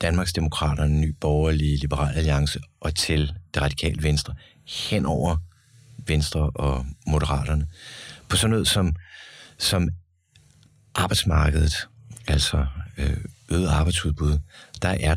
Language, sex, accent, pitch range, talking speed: Danish, male, native, 80-105 Hz, 105 wpm